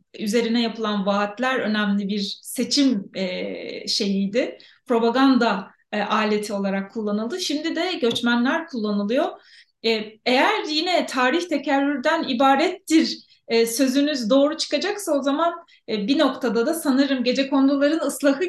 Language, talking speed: Turkish, 115 wpm